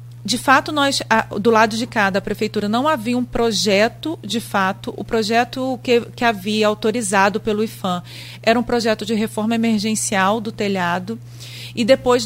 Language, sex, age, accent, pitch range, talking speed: Portuguese, female, 40-59, Brazilian, 195-245 Hz, 160 wpm